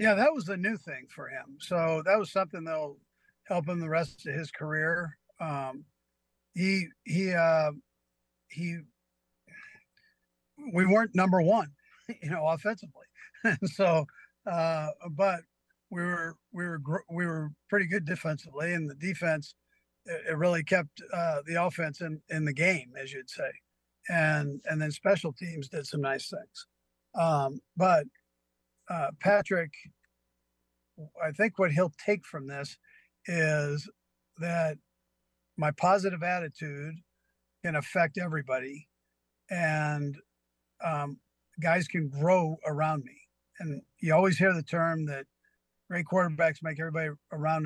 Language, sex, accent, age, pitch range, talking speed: English, male, American, 50-69, 140-175 Hz, 135 wpm